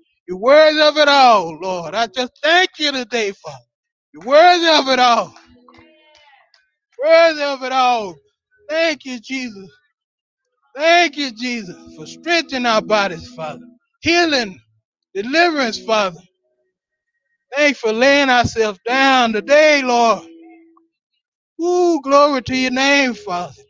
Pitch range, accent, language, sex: 185-295 Hz, American, English, male